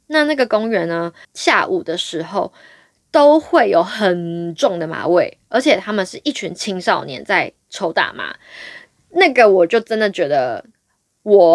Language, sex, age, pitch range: Chinese, female, 10-29, 190-285 Hz